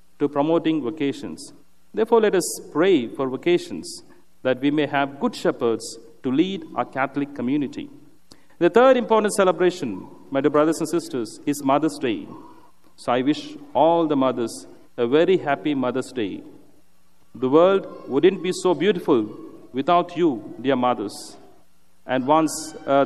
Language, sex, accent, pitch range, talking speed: English, male, Indian, 130-195 Hz, 145 wpm